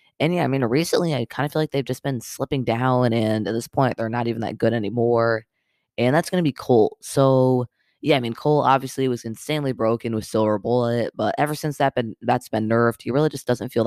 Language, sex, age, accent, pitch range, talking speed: English, female, 20-39, American, 115-135 Hz, 250 wpm